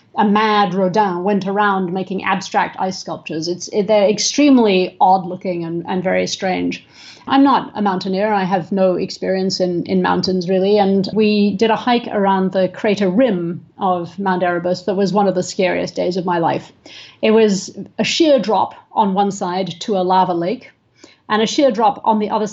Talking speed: 190 wpm